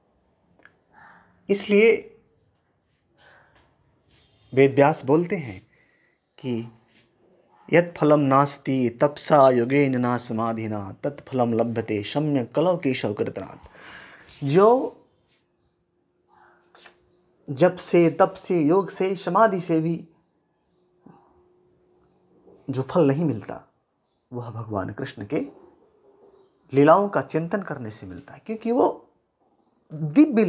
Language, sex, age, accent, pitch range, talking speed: Hindi, male, 30-49, native, 125-195 Hz, 95 wpm